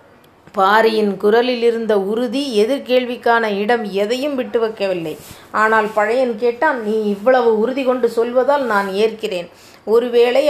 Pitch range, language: 205-245 Hz, Tamil